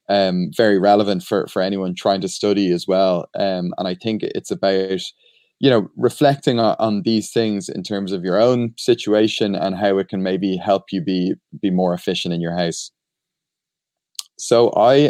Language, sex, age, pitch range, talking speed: English, male, 20-39, 95-115 Hz, 185 wpm